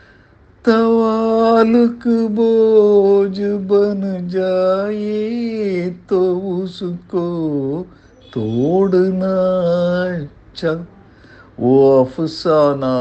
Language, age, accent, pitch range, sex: Tamil, 50-69, native, 160-225 Hz, male